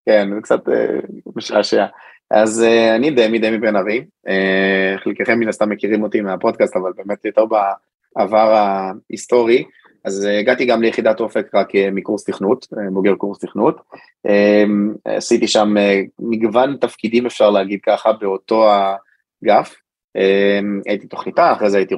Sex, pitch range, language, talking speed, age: male, 100-115 Hz, Hebrew, 125 wpm, 20-39